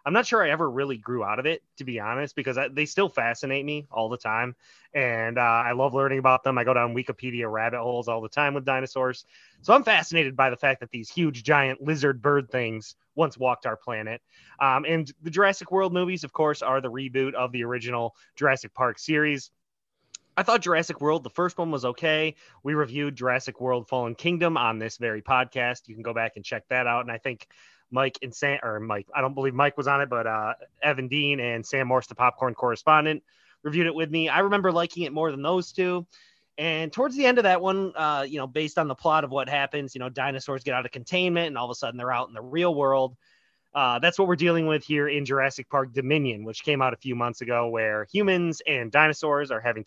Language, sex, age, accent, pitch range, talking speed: English, male, 20-39, American, 125-155 Hz, 235 wpm